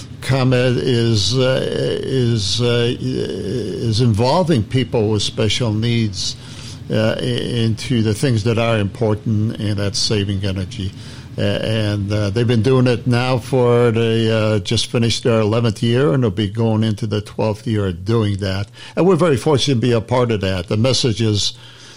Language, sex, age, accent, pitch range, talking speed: English, male, 60-79, American, 110-125 Hz, 160 wpm